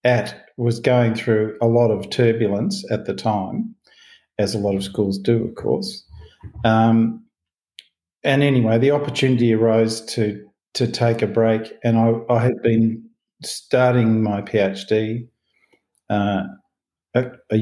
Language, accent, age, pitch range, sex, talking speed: English, Australian, 50-69, 110-125 Hz, male, 140 wpm